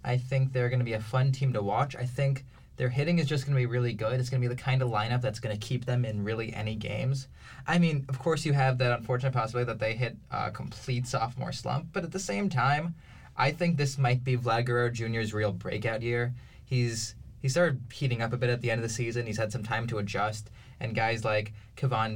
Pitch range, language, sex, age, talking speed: 115-135 Hz, English, male, 20-39, 255 wpm